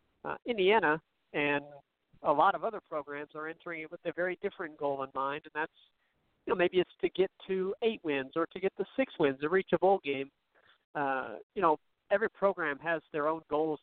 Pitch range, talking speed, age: 145-180 Hz, 215 wpm, 50-69